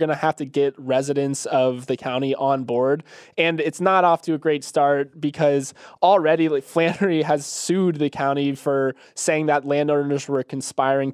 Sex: male